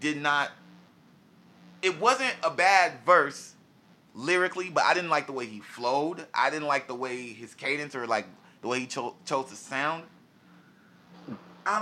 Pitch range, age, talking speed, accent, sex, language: 110-150 Hz, 20-39, 170 wpm, American, male, English